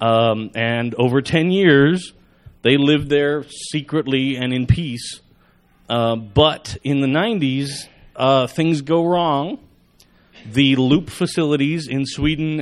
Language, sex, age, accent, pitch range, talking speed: English, male, 30-49, American, 120-150 Hz, 125 wpm